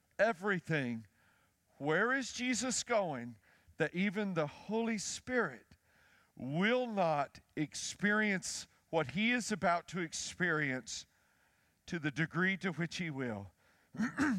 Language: English